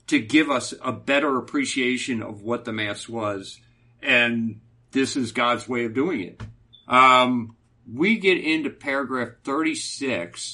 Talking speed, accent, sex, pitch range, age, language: 140 wpm, American, male, 115-140 Hz, 50-69, English